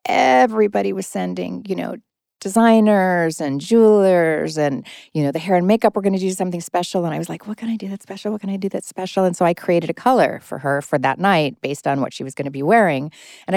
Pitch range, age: 145-185 Hz, 40-59